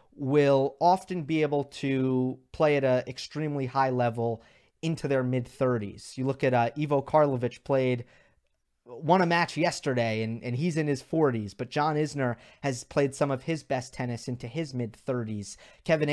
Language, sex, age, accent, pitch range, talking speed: English, male, 30-49, American, 120-150 Hz, 175 wpm